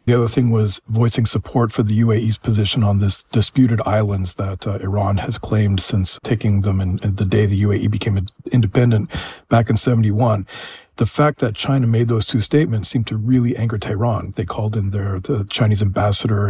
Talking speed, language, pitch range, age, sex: 195 wpm, English, 105-125 Hz, 40-59, male